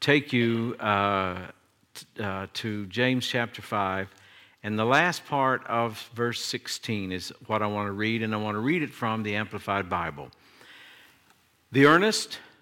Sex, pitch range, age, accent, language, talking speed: male, 105-130 Hz, 60-79, American, English, 155 wpm